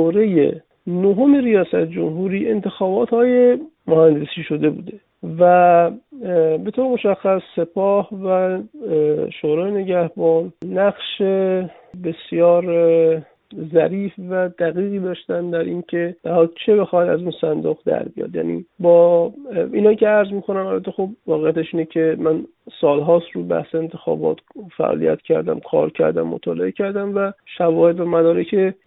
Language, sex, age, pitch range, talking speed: English, male, 50-69, 160-200 Hz, 125 wpm